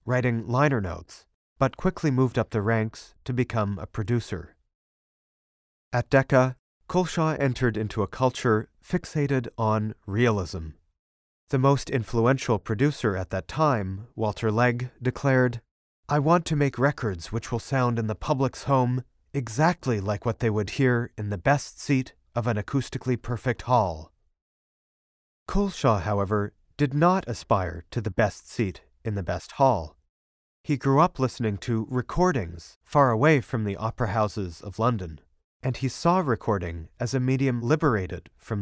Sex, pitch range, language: male, 100-135 Hz, English